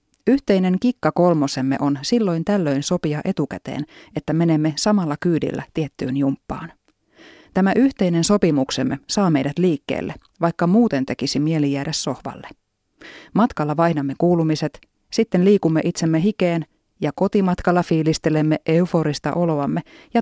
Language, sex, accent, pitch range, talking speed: Finnish, female, native, 145-190 Hz, 115 wpm